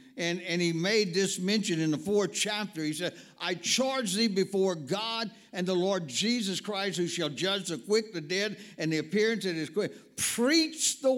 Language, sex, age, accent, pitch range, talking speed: English, male, 60-79, American, 180-240 Hz, 200 wpm